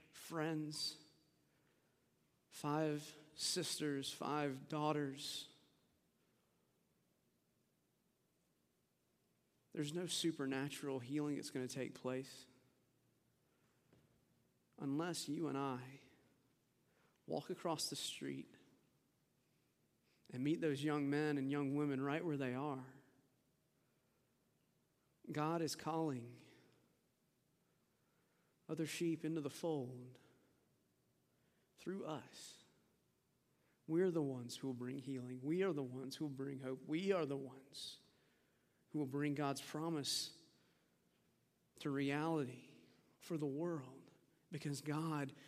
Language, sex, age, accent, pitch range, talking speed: English, male, 40-59, American, 135-155 Hz, 100 wpm